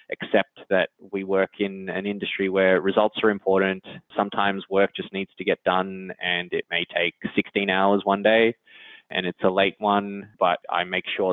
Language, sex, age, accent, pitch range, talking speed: English, male, 20-39, Australian, 95-105 Hz, 185 wpm